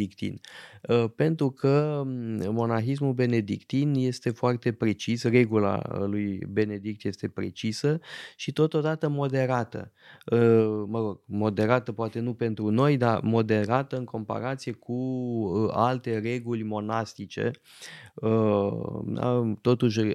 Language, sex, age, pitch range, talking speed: Romanian, male, 20-39, 105-125 Hz, 85 wpm